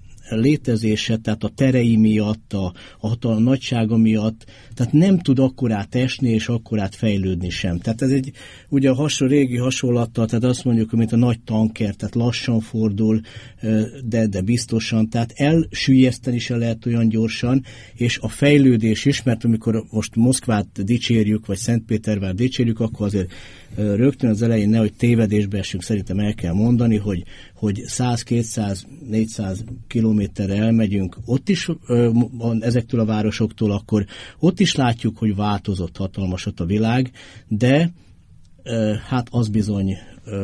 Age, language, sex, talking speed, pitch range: 50-69, Hungarian, male, 140 wpm, 105-125 Hz